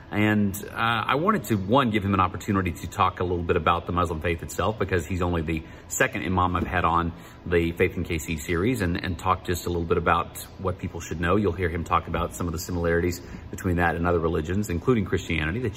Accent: American